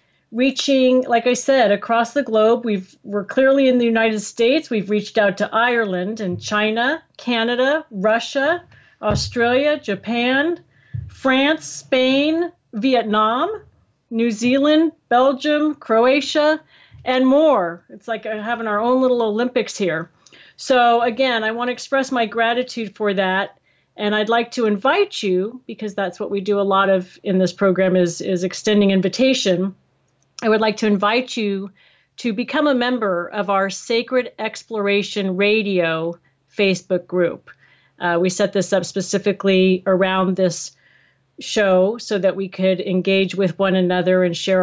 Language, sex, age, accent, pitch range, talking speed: English, female, 40-59, American, 185-245 Hz, 145 wpm